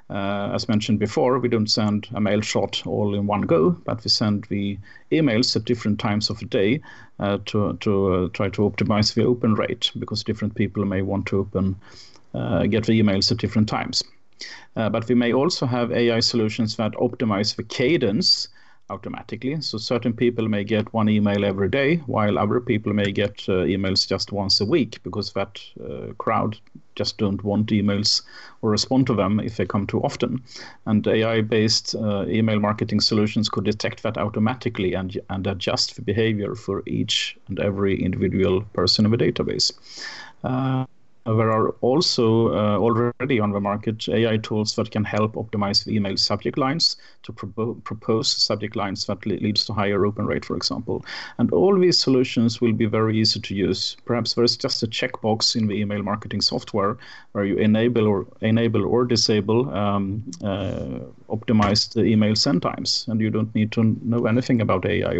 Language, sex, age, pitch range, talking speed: English, male, 40-59, 100-120 Hz, 180 wpm